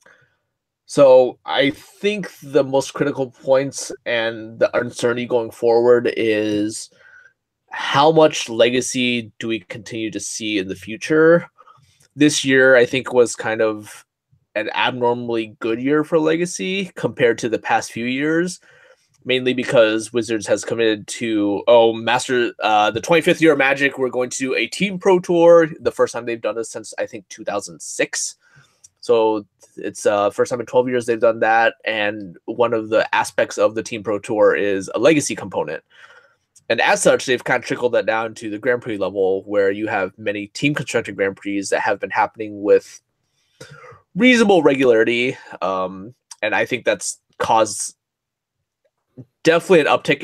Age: 20-39